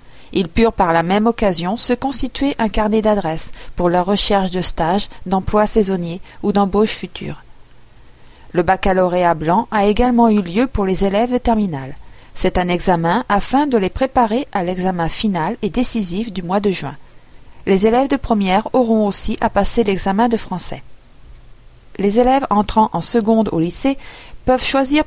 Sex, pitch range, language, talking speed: female, 185-230 Hz, French, 165 wpm